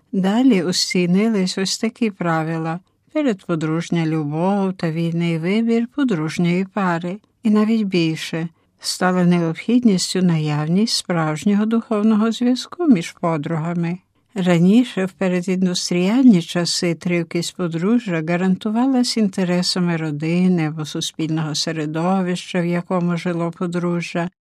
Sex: female